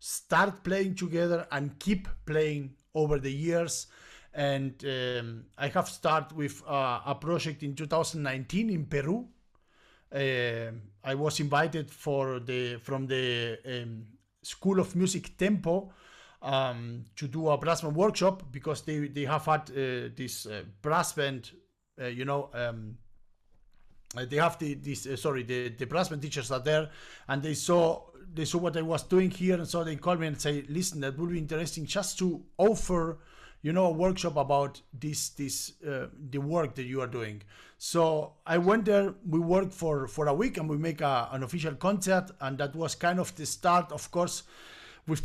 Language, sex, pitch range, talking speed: English, male, 135-175 Hz, 180 wpm